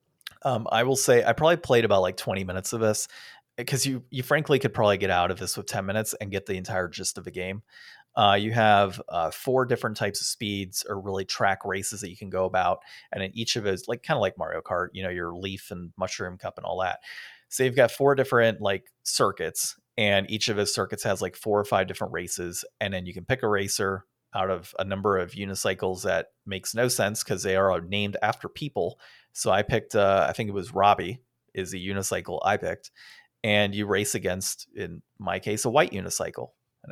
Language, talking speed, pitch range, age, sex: English, 230 wpm, 95-120 Hz, 30-49, male